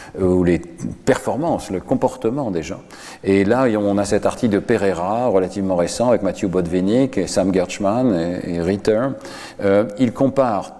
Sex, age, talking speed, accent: male, 50-69, 150 wpm, French